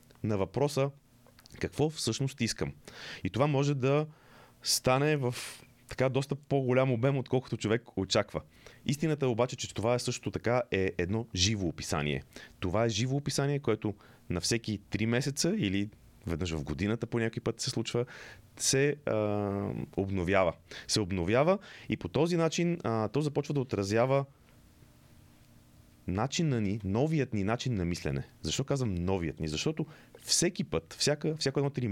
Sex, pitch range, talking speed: male, 95-130 Hz, 145 wpm